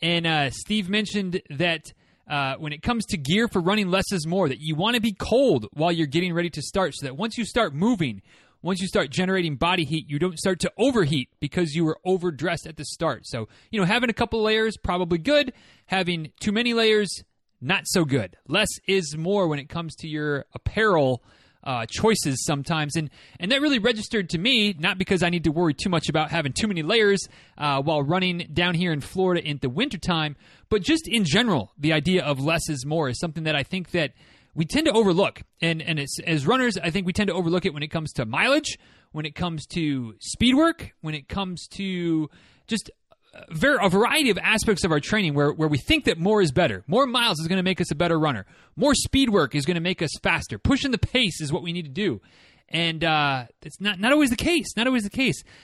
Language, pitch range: English, 155-215 Hz